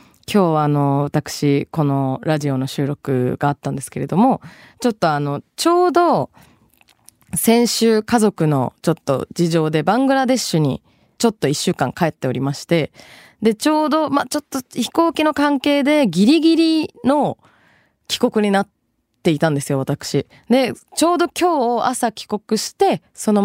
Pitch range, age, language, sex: 150-235 Hz, 20-39, Japanese, female